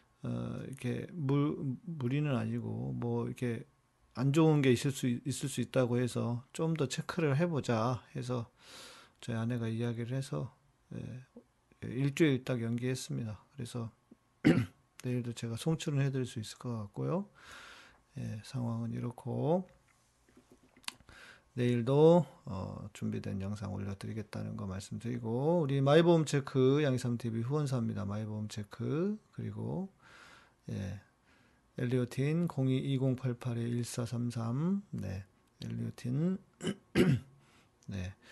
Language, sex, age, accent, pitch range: Korean, male, 40-59, native, 120-145 Hz